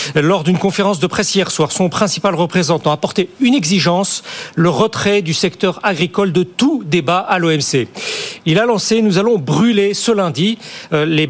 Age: 40-59